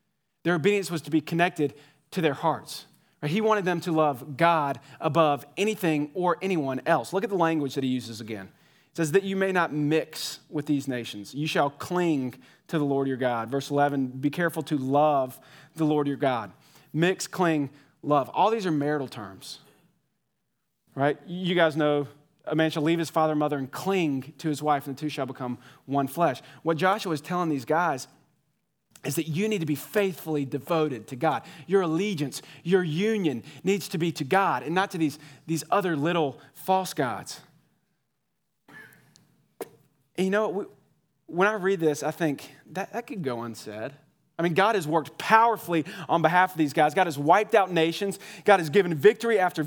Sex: male